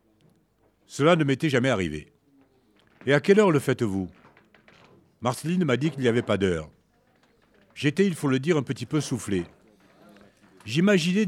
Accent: French